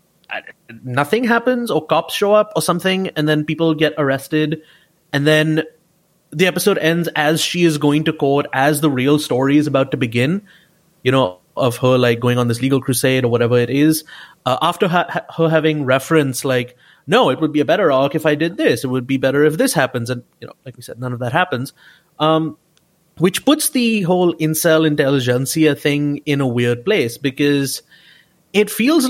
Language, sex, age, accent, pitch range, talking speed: English, male, 30-49, Indian, 125-170 Hz, 200 wpm